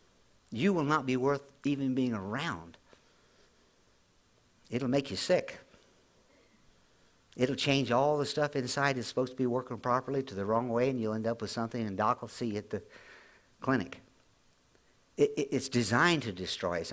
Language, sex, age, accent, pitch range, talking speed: English, male, 60-79, American, 110-140 Hz, 165 wpm